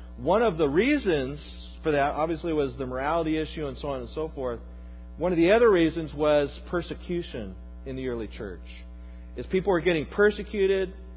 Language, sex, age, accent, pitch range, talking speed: English, male, 40-59, American, 110-185 Hz, 175 wpm